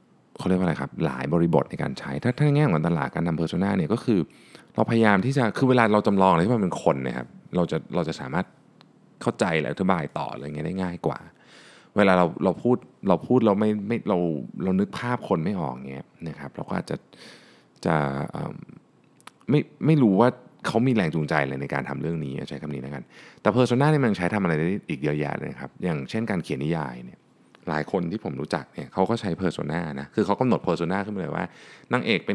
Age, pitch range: 30-49, 75-105 Hz